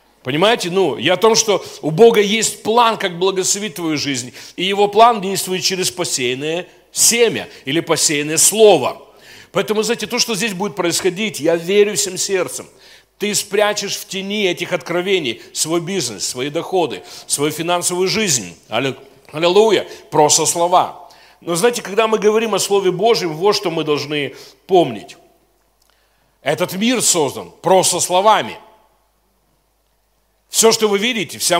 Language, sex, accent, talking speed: Russian, male, native, 140 wpm